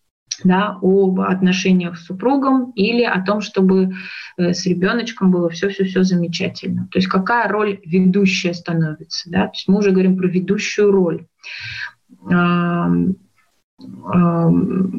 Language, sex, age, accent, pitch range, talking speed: Russian, female, 20-39, native, 180-210 Hz, 115 wpm